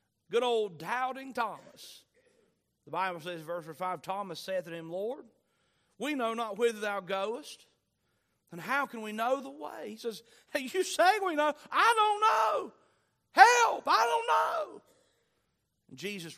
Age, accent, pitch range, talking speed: 40-59, American, 185-285 Hz, 160 wpm